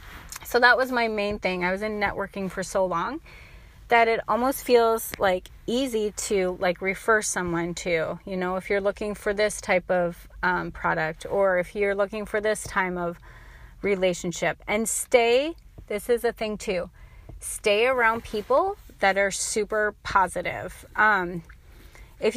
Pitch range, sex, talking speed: 185-220 Hz, female, 160 wpm